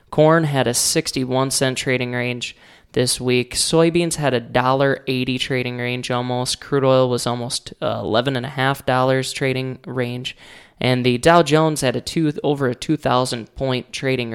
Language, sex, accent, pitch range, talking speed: English, male, American, 120-140 Hz, 155 wpm